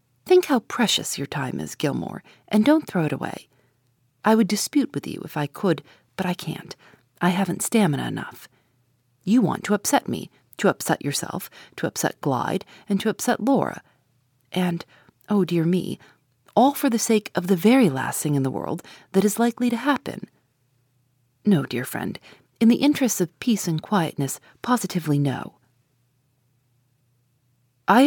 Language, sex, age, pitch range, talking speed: English, female, 40-59, 130-210 Hz, 165 wpm